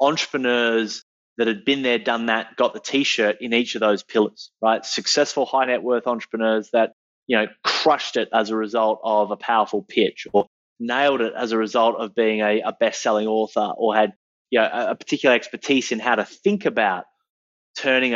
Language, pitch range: English, 105-120 Hz